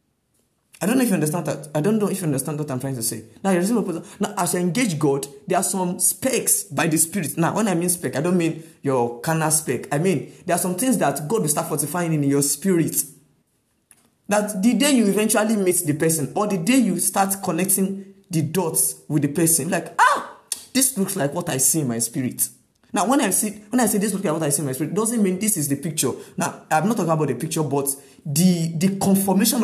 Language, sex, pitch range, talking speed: English, male, 150-195 Hz, 235 wpm